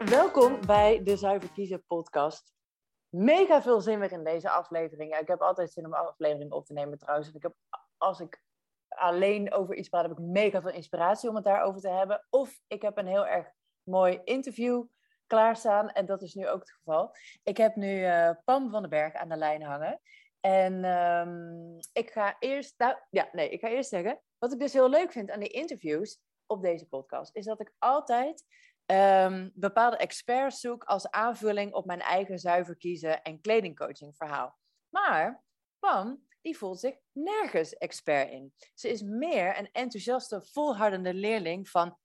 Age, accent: 20-39, Dutch